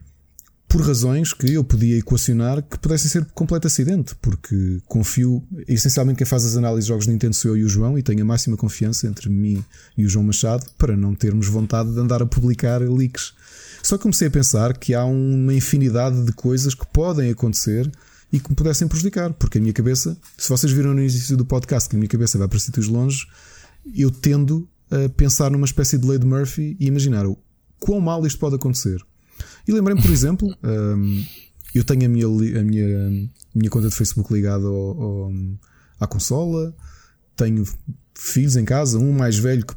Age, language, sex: 20-39, Portuguese, male